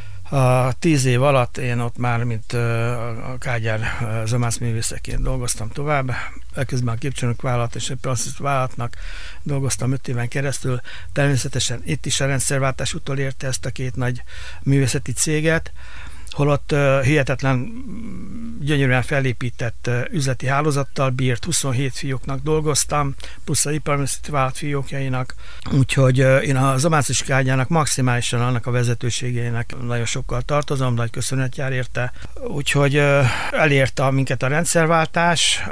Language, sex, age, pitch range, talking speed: Hungarian, male, 60-79, 125-140 Hz, 130 wpm